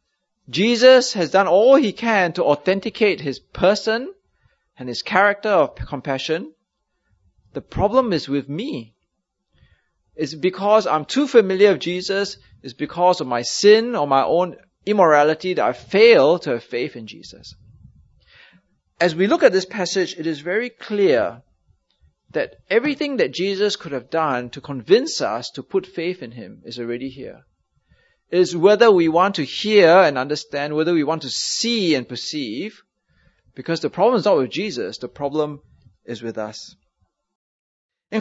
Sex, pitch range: male, 135-210 Hz